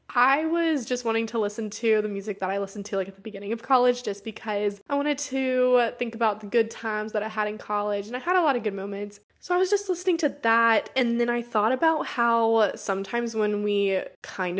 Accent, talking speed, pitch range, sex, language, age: American, 245 wpm, 195-235 Hz, female, English, 20-39